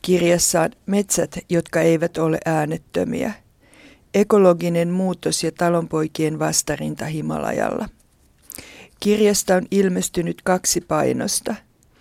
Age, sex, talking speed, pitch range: 50-69, female, 90 wpm, 165-190 Hz